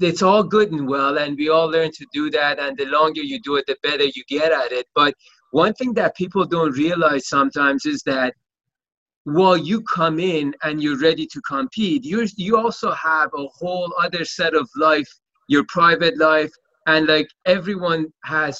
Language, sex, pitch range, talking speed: English, male, 140-175 Hz, 190 wpm